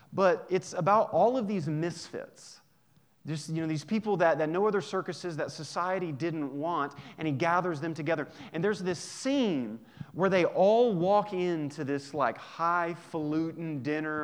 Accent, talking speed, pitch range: American, 165 wpm, 140-170 Hz